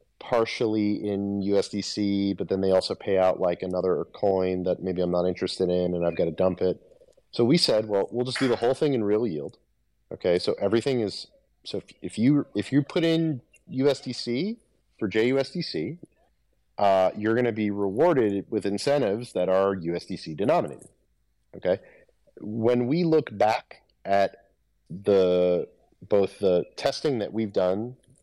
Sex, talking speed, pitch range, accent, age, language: male, 160 wpm, 90-110 Hz, American, 30-49, English